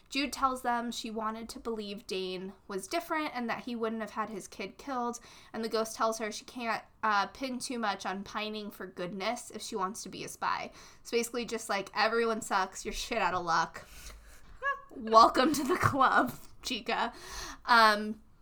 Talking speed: 190 wpm